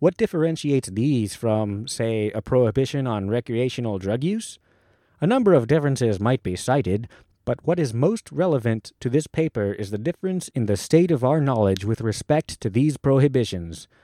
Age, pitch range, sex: 30-49, 105-145 Hz, male